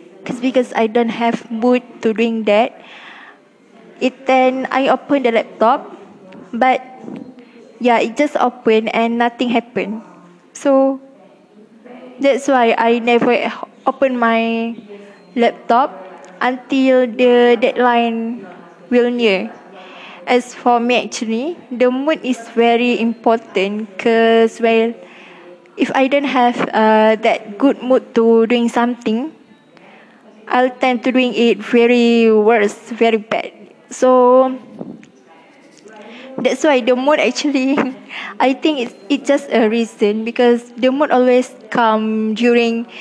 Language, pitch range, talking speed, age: English, 225-255 Hz, 115 wpm, 20-39